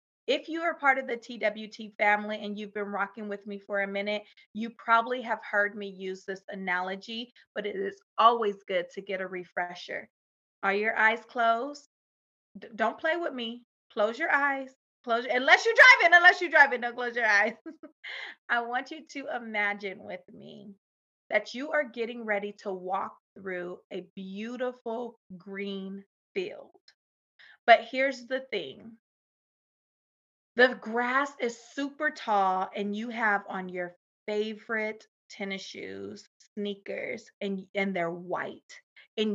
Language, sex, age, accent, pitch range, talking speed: English, female, 30-49, American, 195-250 Hz, 150 wpm